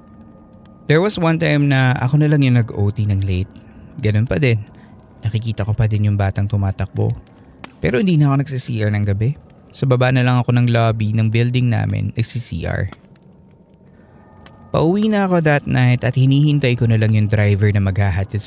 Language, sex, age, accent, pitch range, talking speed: Filipino, male, 20-39, native, 105-135 Hz, 175 wpm